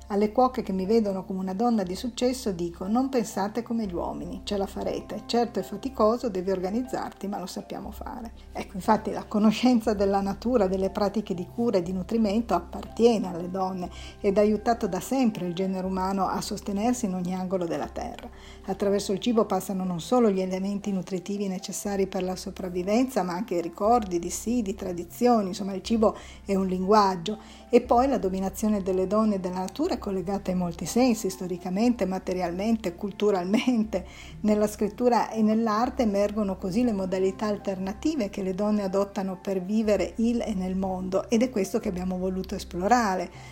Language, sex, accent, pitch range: Italian, female, native, 190-225 Hz